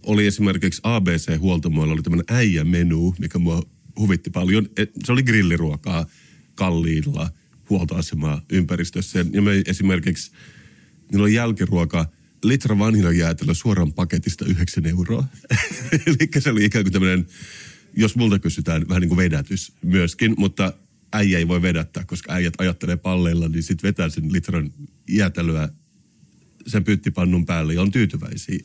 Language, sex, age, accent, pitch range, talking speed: Finnish, male, 30-49, native, 85-105 Hz, 130 wpm